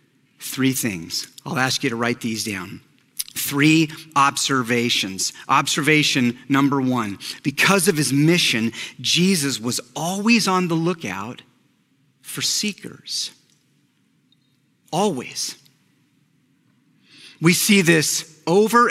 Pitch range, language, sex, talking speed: 125-180 Hz, English, male, 100 wpm